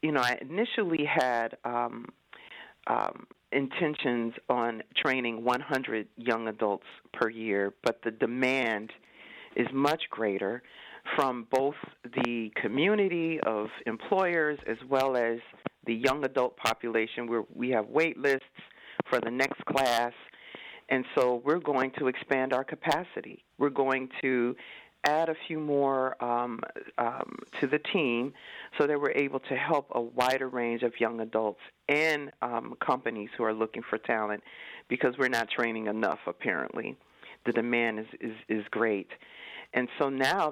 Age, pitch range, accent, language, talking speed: 40-59, 120-150 Hz, American, English, 145 wpm